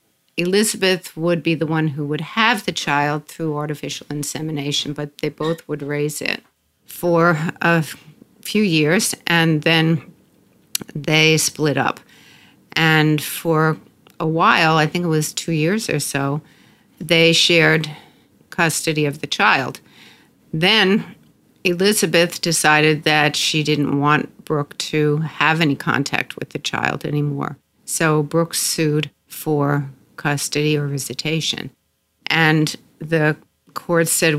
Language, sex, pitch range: English, female, 145-165 Hz